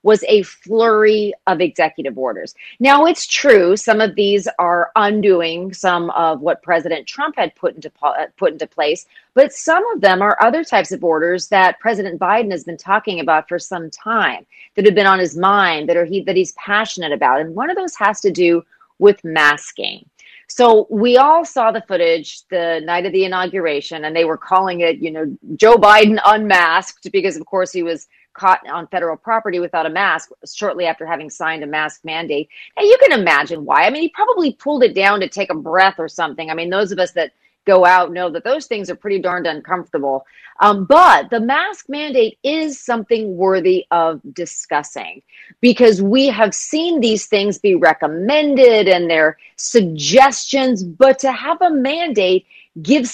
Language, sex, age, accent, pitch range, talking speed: English, female, 30-49, American, 170-240 Hz, 190 wpm